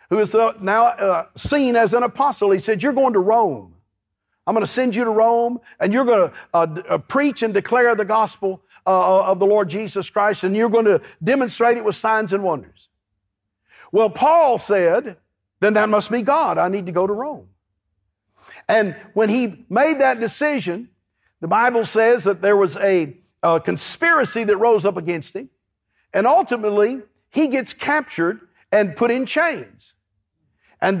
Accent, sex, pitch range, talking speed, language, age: American, male, 185-245 Hz, 175 wpm, English, 50-69